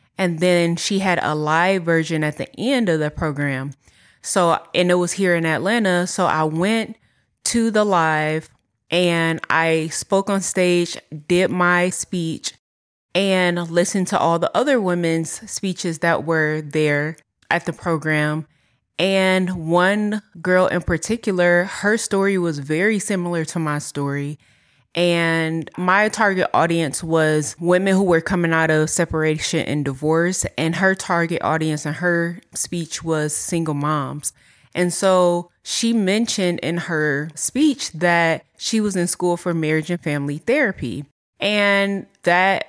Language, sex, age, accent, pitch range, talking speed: English, female, 20-39, American, 155-185 Hz, 145 wpm